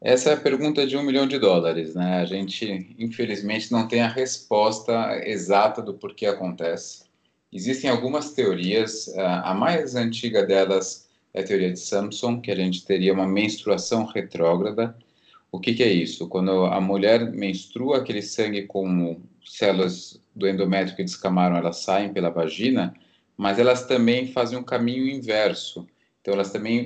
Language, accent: Portuguese, Brazilian